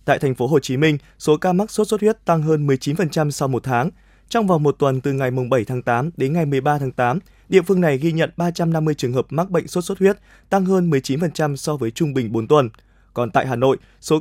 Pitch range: 140-180 Hz